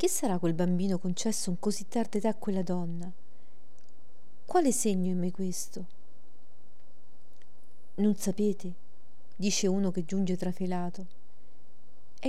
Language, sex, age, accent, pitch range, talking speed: Italian, female, 40-59, native, 180-210 Hz, 120 wpm